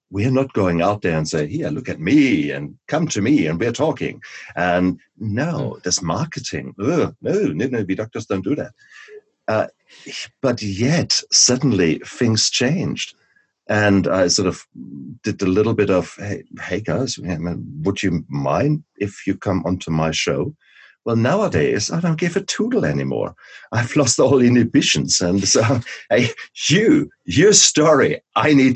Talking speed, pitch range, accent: 165 wpm, 100-140 Hz, German